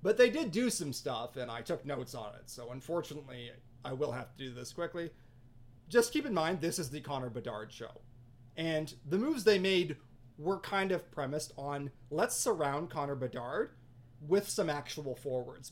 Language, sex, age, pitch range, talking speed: English, male, 30-49, 125-165 Hz, 185 wpm